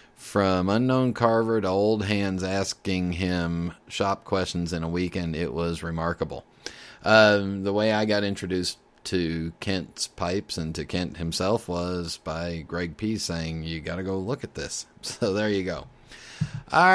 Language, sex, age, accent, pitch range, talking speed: English, male, 30-49, American, 95-130 Hz, 165 wpm